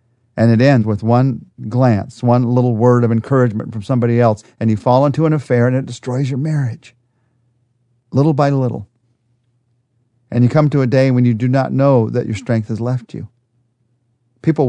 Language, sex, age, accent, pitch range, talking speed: English, male, 40-59, American, 115-135 Hz, 190 wpm